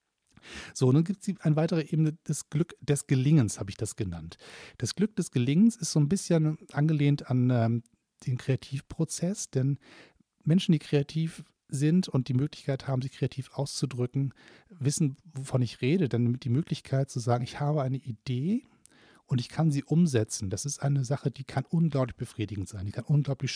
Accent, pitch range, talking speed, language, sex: German, 125-150 Hz, 180 wpm, German, male